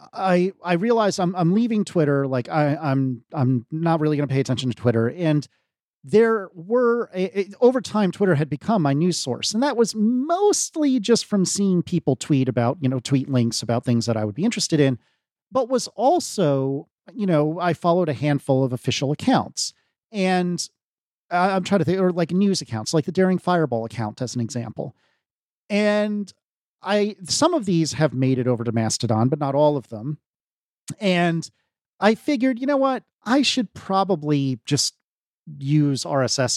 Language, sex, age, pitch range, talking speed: English, male, 40-59, 130-190 Hz, 185 wpm